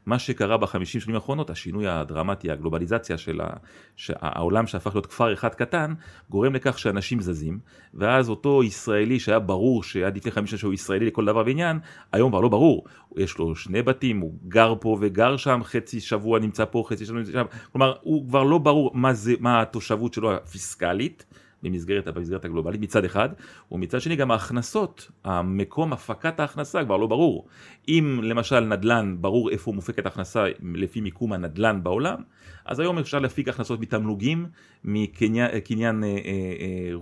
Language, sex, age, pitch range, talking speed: Hebrew, male, 40-59, 100-130 Hz, 165 wpm